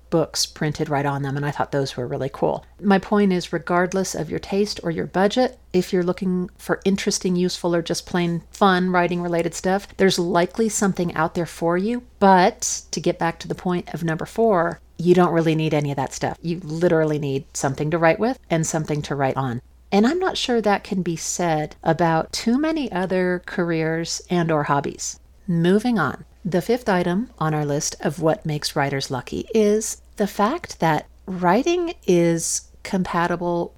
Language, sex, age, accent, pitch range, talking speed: English, female, 40-59, American, 155-195 Hz, 190 wpm